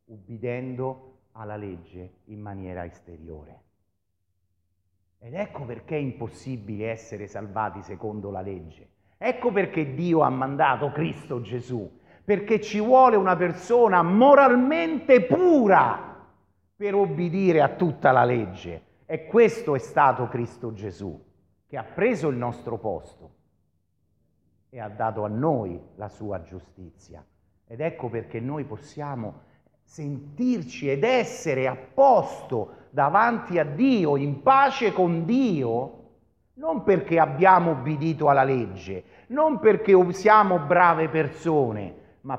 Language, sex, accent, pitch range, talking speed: Italian, male, native, 100-160 Hz, 120 wpm